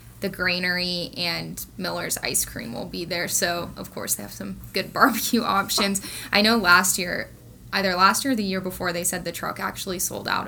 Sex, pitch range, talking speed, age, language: female, 175-205 Hz, 205 wpm, 10-29, English